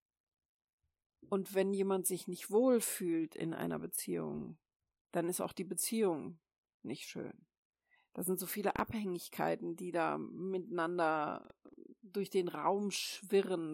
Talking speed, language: 120 wpm, German